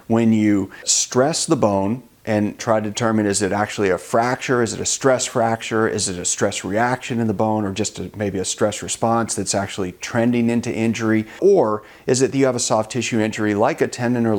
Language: English